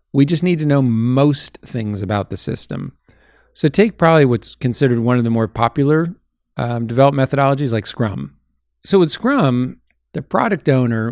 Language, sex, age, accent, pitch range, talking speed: English, male, 50-69, American, 115-140 Hz, 165 wpm